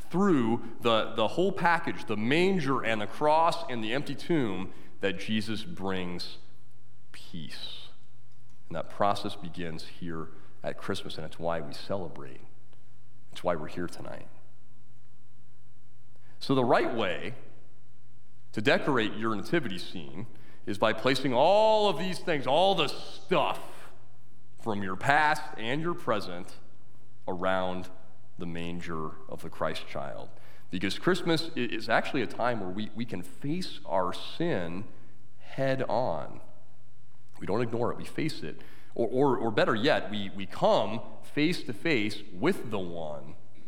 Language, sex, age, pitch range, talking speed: English, male, 40-59, 95-125 Hz, 140 wpm